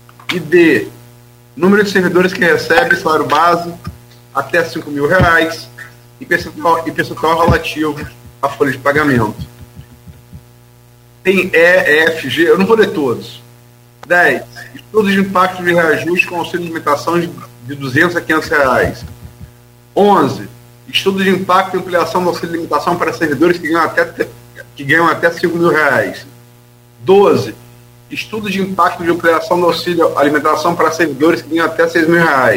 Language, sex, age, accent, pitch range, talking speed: Portuguese, male, 40-59, Brazilian, 120-175 Hz, 140 wpm